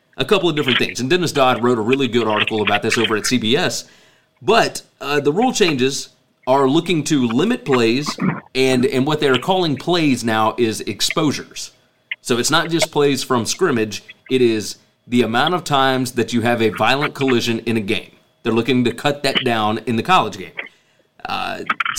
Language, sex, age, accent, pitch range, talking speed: English, male, 30-49, American, 115-150 Hz, 190 wpm